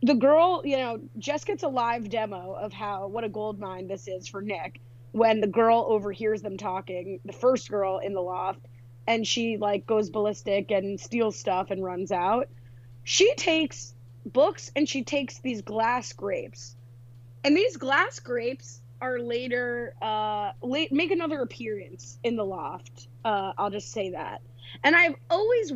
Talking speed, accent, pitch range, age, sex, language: 170 wpm, American, 190-250 Hz, 20-39, female, English